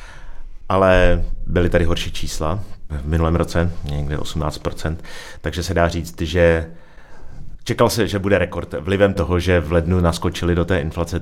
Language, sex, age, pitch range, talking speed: Czech, male, 30-49, 85-100 Hz, 155 wpm